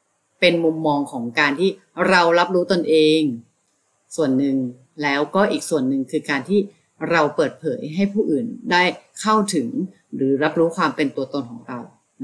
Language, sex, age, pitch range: Thai, female, 30-49, 150-205 Hz